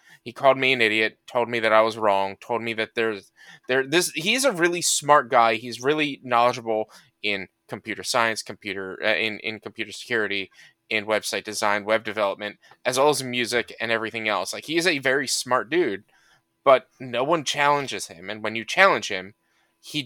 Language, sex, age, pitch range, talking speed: English, male, 20-39, 110-140 Hz, 190 wpm